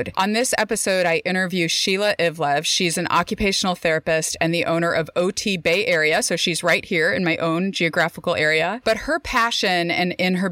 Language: English